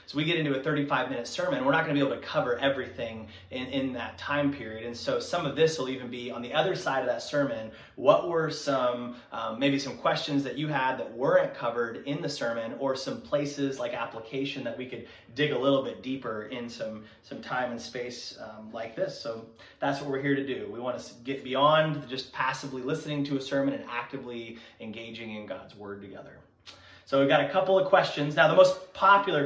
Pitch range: 125-150 Hz